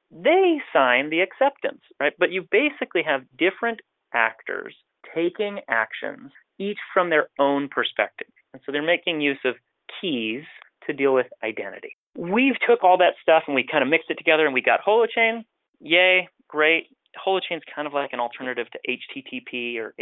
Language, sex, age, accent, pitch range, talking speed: English, male, 30-49, American, 125-205 Hz, 170 wpm